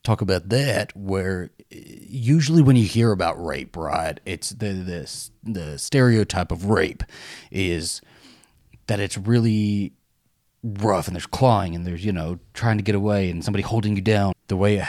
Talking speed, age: 170 wpm, 30-49